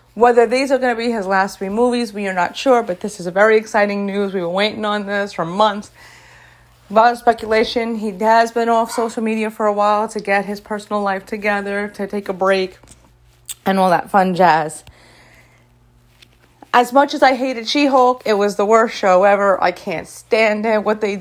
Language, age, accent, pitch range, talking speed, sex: English, 30-49, American, 195-235 Hz, 205 wpm, female